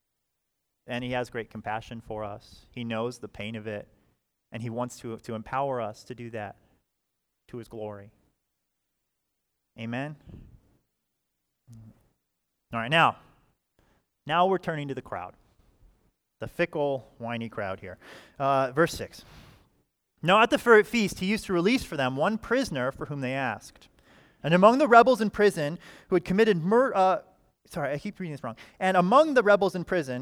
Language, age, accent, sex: English, 30-49, American, male